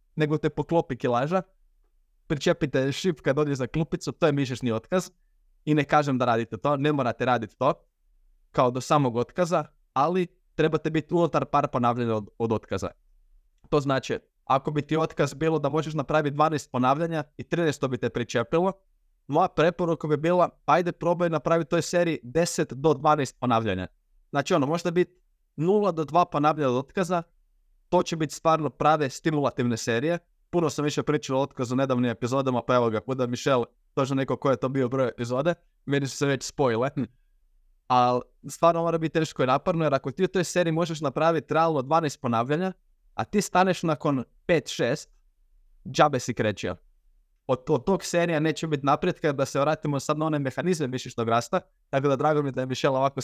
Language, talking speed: Croatian, 185 wpm